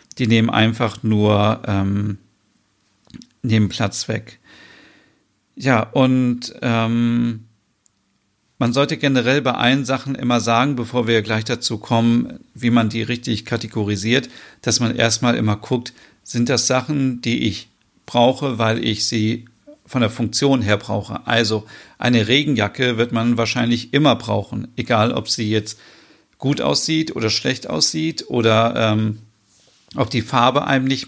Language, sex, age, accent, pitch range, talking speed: German, male, 40-59, German, 110-130 Hz, 140 wpm